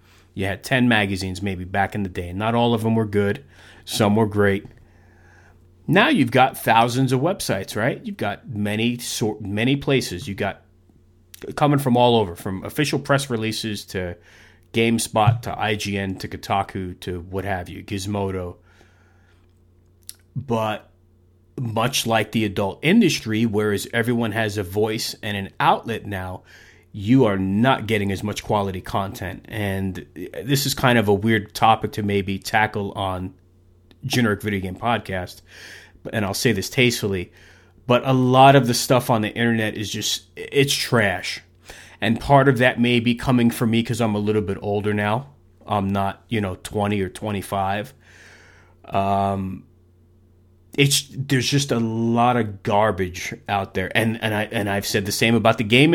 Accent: American